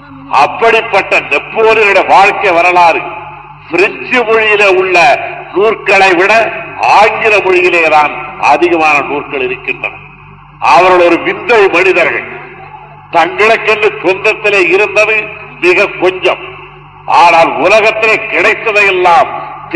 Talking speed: 75 wpm